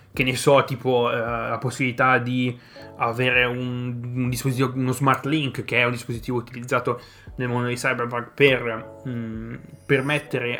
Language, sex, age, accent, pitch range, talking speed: Italian, male, 20-39, native, 120-130 Hz, 160 wpm